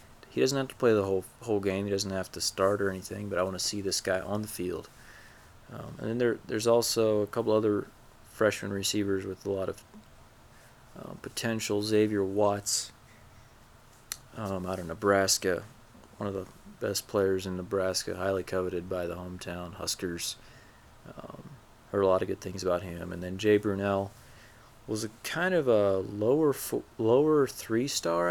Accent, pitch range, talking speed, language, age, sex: American, 90-110 Hz, 180 wpm, English, 20-39, male